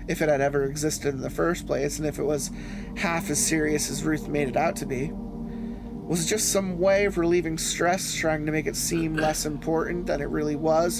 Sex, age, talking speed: male, 20-39, 230 wpm